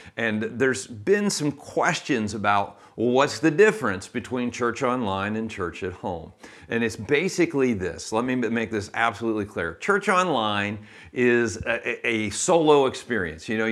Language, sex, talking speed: English, male, 155 wpm